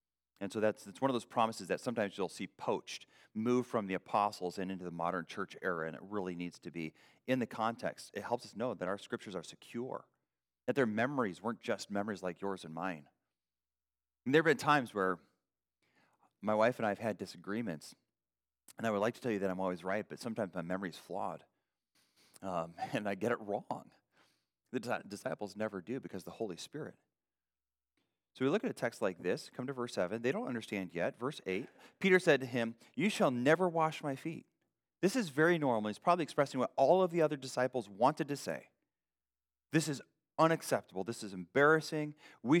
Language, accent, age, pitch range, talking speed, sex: English, American, 30-49, 90-145 Hz, 205 wpm, male